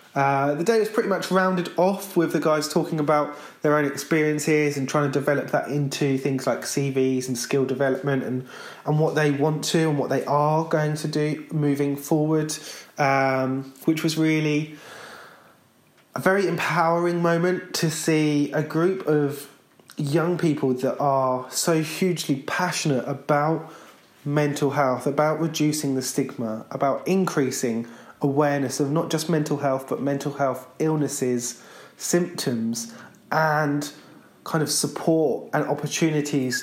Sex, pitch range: male, 135-160 Hz